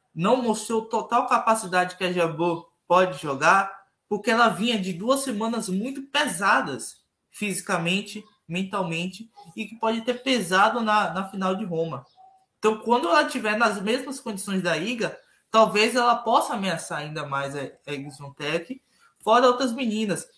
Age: 20-39